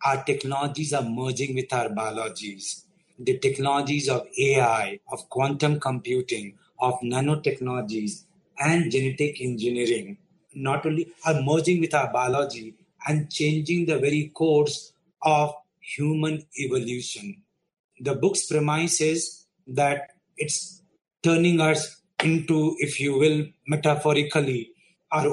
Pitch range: 135-165 Hz